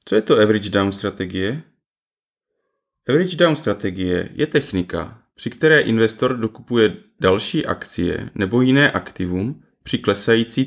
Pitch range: 110-140 Hz